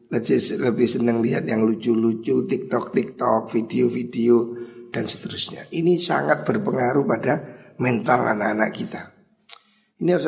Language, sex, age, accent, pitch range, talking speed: Indonesian, male, 50-69, native, 110-160 Hz, 110 wpm